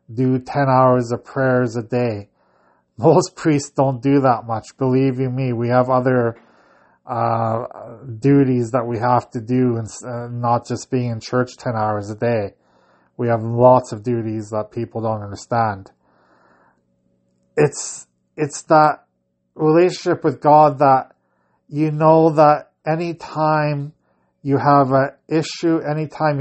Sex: male